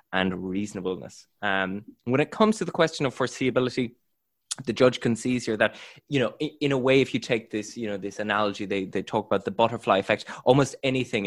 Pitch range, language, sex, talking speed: 100-120 Hz, English, male, 215 wpm